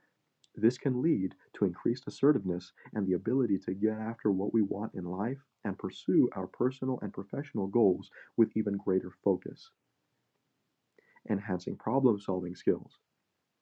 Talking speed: 135 wpm